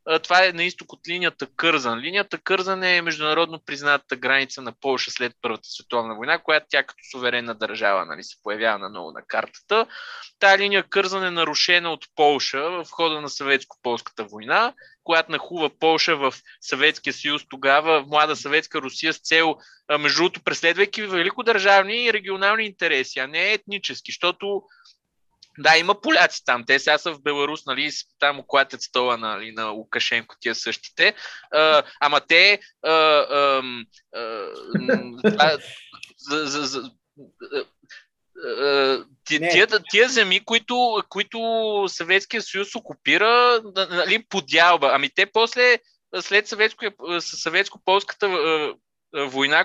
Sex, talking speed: male, 130 wpm